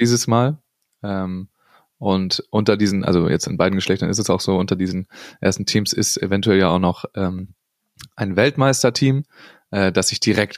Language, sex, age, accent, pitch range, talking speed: German, male, 20-39, German, 95-110 Hz, 180 wpm